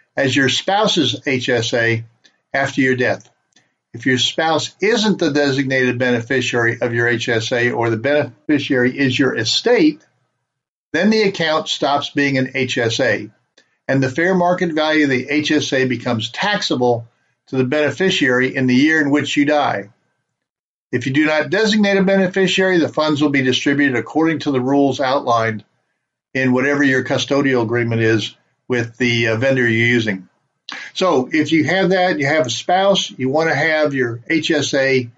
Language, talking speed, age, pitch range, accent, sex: English, 155 wpm, 50-69, 120-155 Hz, American, male